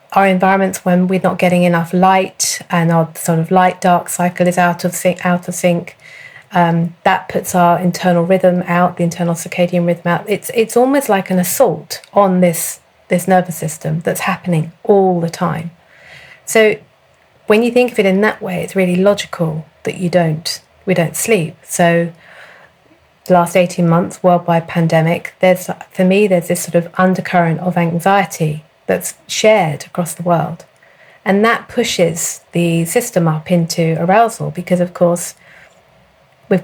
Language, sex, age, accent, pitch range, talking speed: English, female, 40-59, British, 170-190 Hz, 165 wpm